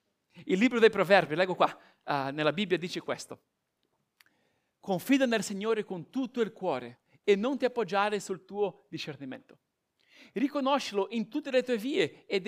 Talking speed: 155 wpm